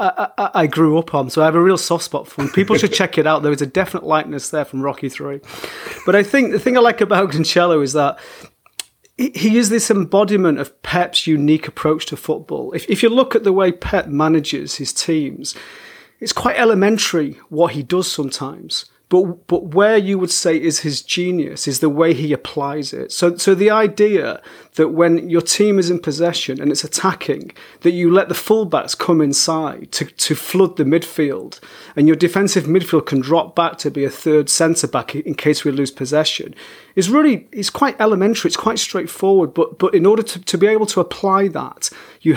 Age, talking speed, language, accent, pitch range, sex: 30-49, 210 wpm, English, British, 155-195 Hz, male